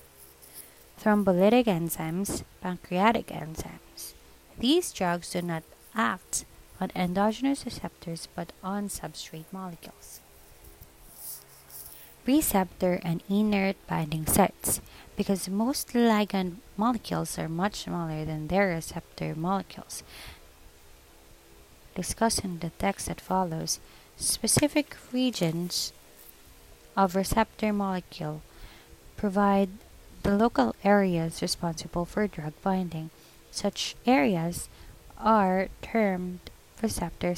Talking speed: 90 wpm